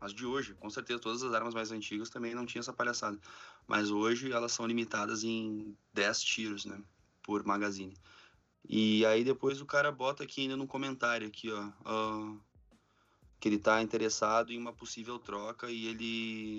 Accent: Brazilian